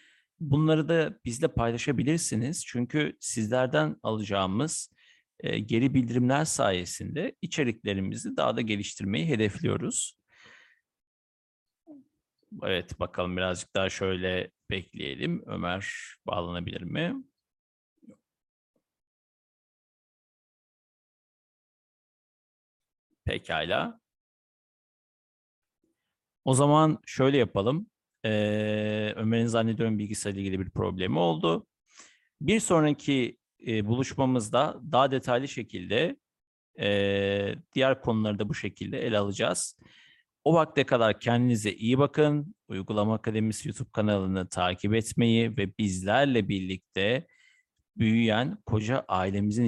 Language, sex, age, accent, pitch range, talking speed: Turkish, male, 50-69, native, 100-135 Hz, 80 wpm